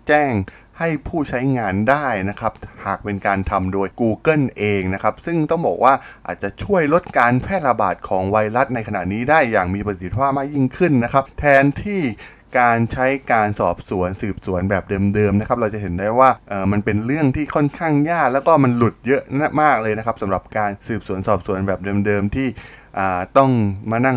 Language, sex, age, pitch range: Thai, male, 20-39, 100-130 Hz